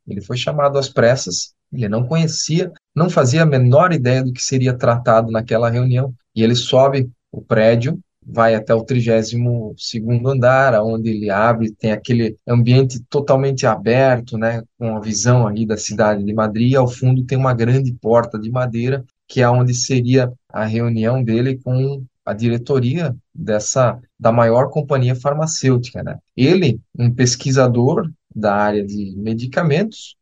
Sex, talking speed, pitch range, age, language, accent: male, 155 wpm, 115-145 Hz, 20-39, Portuguese, Brazilian